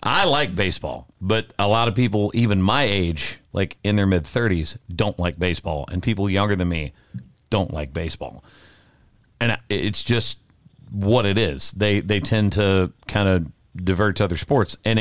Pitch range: 95-115 Hz